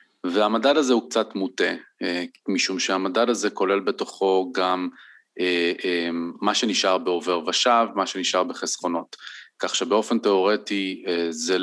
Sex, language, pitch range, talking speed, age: male, Hebrew, 90-105 Hz, 115 wpm, 30-49